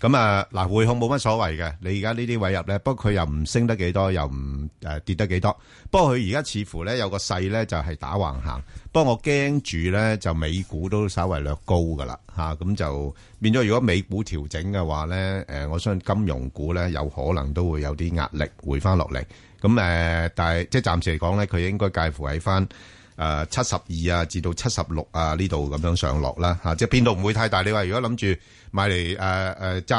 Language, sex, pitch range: Chinese, male, 85-105 Hz